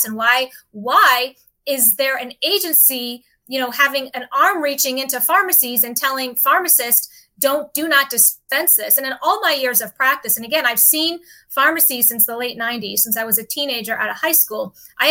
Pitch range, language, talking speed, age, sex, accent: 245-310 Hz, English, 195 wpm, 30-49, female, American